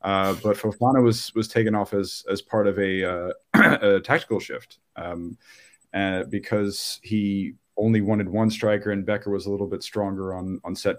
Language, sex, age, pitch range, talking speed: English, male, 30-49, 95-110 Hz, 185 wpm